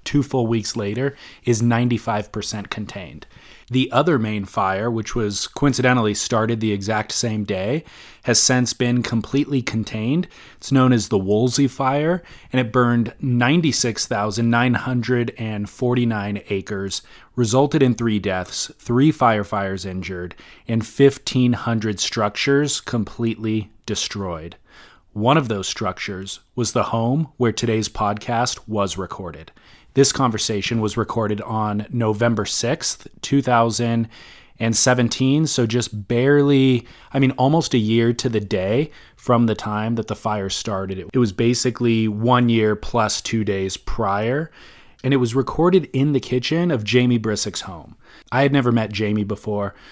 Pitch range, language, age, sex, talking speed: 105-125 Hz, English, 20-39, male, 135 wpm